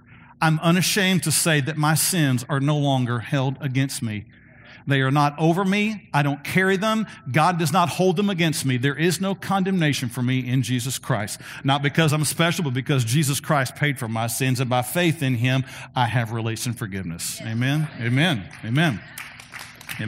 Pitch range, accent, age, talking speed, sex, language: 125-175 Hz, American, 50-69, 190 wpm, male, English